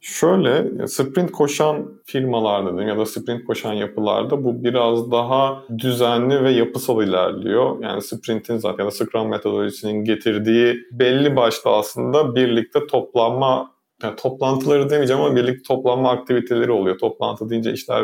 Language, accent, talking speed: Turkish, native, 135 wpm